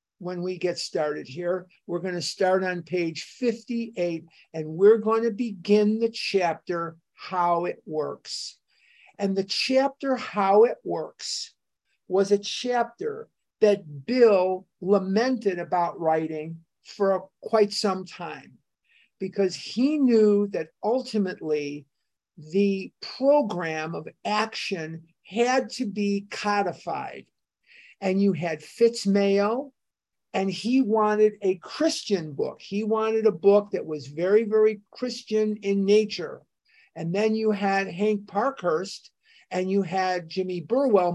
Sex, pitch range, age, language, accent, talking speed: male, 180-230 Hz, 50-69, English, American, 125 wpm